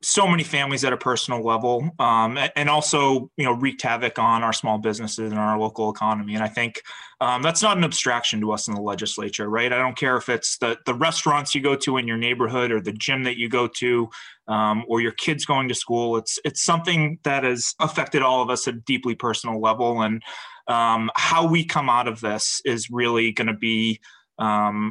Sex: male